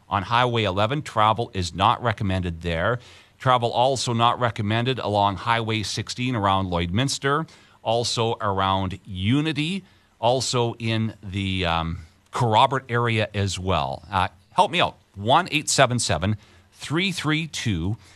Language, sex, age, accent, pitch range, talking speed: English, male, 40-59, American, 100-130 Hz, 110 wpm